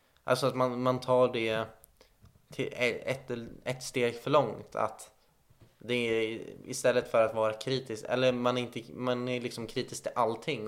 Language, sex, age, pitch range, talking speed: Swedish, male, 20-39, 105-125 Hz, 165 wpm